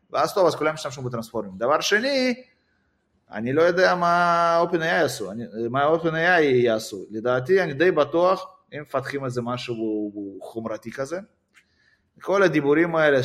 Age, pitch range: 20-39, 115-150 Hz